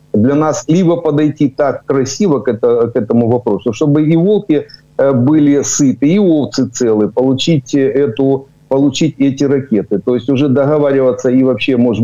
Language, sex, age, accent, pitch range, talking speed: Ukrainian, male, 50-69, native, 125-150 Hz, 155 wpm